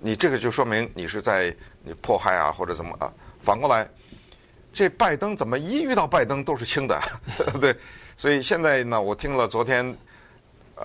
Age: 50-69